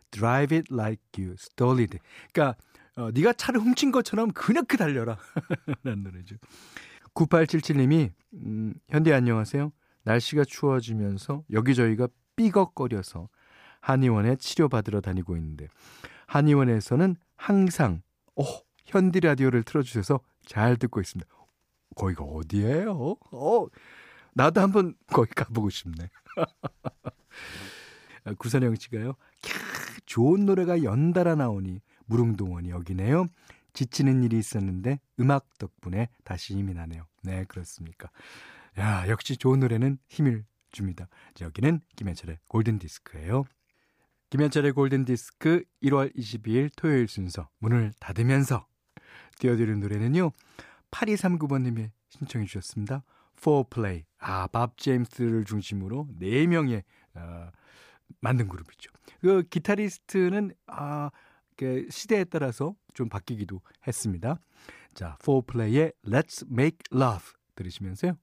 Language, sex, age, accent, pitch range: Korean, male, 40-59, native, 100-145 Hz